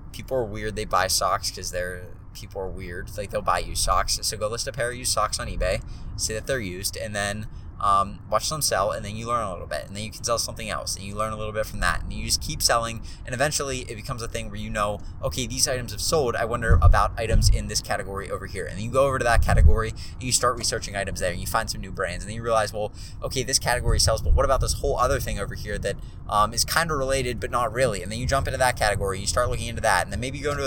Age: 20-39